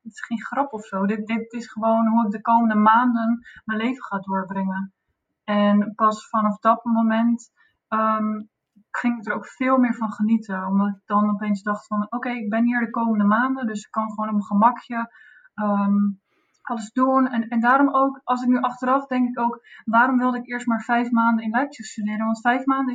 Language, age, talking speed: Dutch, 20-39, 205 wpm